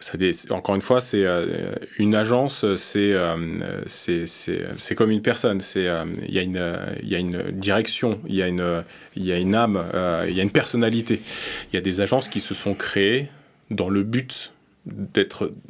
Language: French